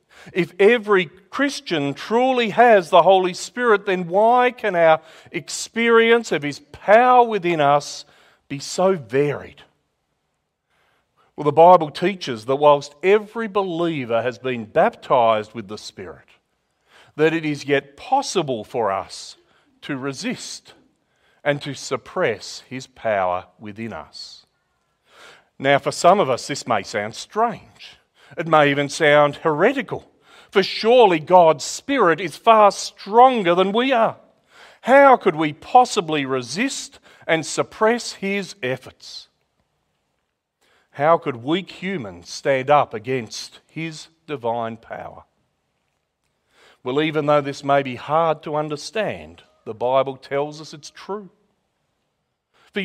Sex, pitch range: male, 140-200 Hz